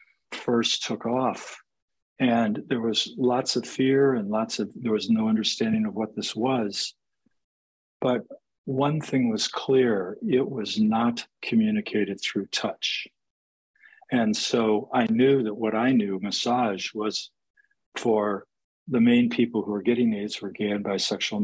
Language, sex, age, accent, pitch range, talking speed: English, male, 50-69, American, 110-140 Hz, 150 wpm